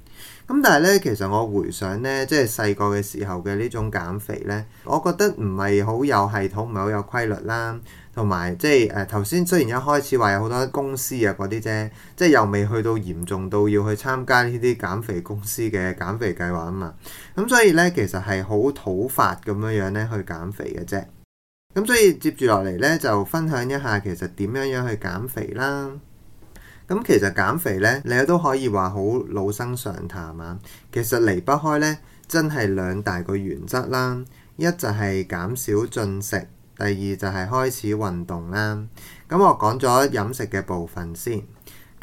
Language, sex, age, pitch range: Chinese, male, 20-39, 100-125 Hz